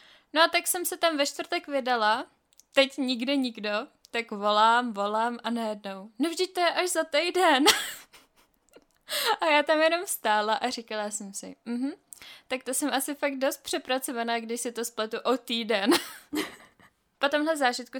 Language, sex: Czech, female